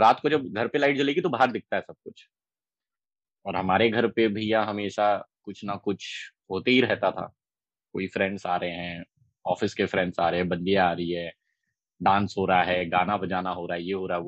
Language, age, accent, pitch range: Hindi, 20-39, native, 95-130 Hz